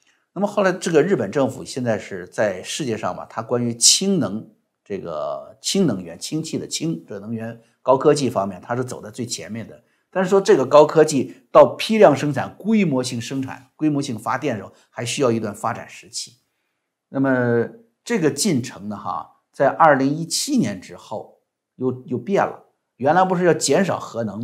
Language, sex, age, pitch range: Chinese, male, 50-69, 120-165 Hz